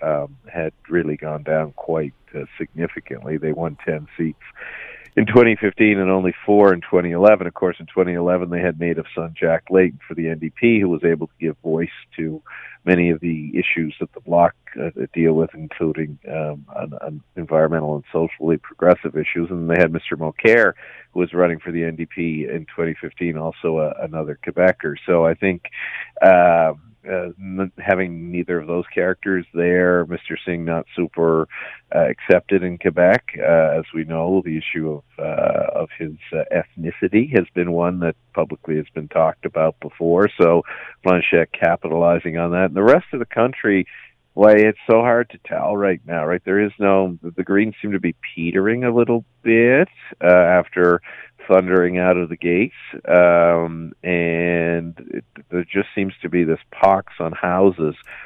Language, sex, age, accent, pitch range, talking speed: English, male, 50-69, American, 80-95 Hz, 175 wpm